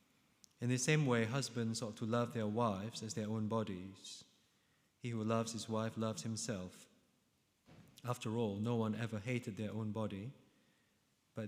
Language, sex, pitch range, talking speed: English, male, 100-120 Hz, 160 wpm